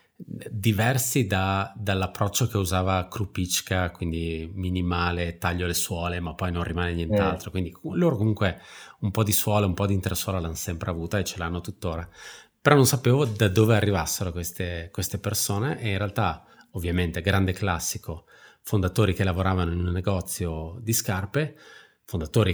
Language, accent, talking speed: Italian, native, 155 wpm